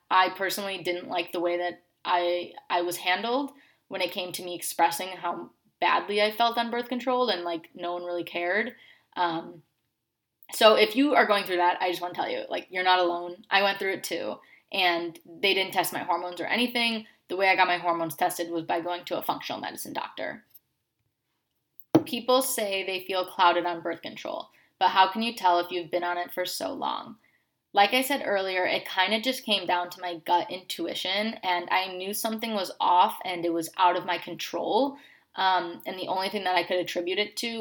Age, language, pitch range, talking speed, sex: 20-39, English, 175-205 Hz, 215 wpm, female